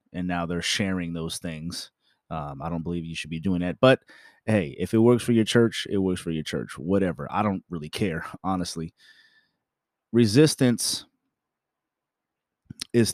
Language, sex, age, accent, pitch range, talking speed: English, male, 30-49, American, 90-110 Hz, 165 wpm